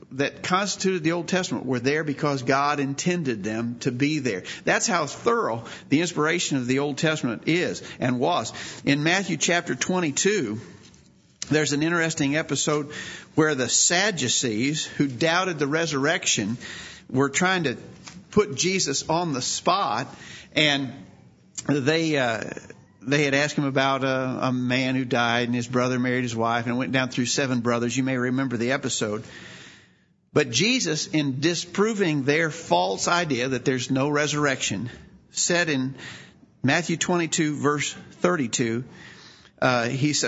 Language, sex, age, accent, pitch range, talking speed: English, male, 50-69, American, 130-160 Hz, 145 wpm